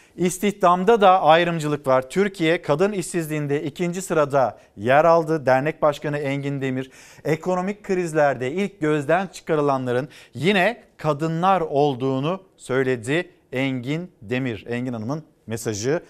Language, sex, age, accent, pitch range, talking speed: Turkish, male, 50-69, native, 140-175 Hz, 110 wpm